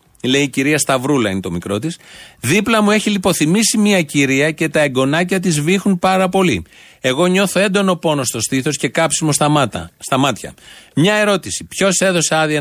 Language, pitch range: Greek, 135-175 Hz